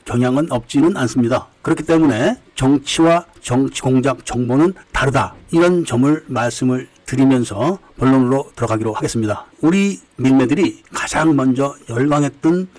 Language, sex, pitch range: Korean, male, 130-185 Hz